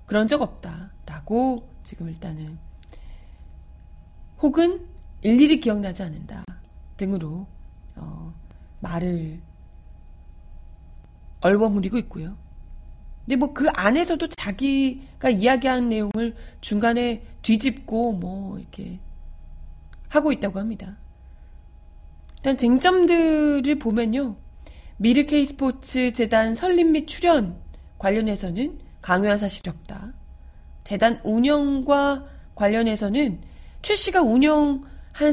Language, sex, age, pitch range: Korean, female, 30-49, 165-275 Hz